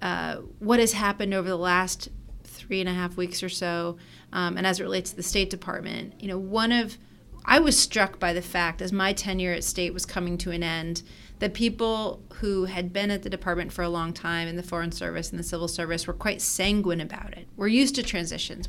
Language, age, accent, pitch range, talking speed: English, 30-49, American, 180-215 Hz, 230 wpm